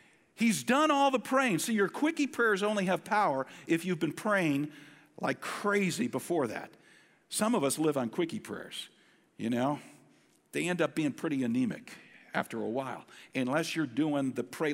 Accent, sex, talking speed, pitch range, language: American, male, 175 wpm, 145-190 Hz, English